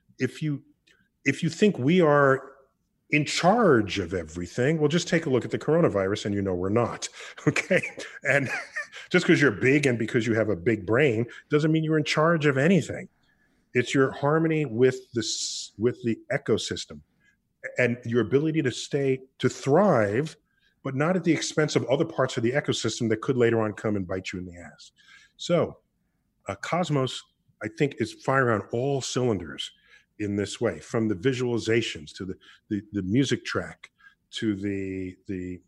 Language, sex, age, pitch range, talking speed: English, male, 40-59, 105-145 Hz, 180 wpm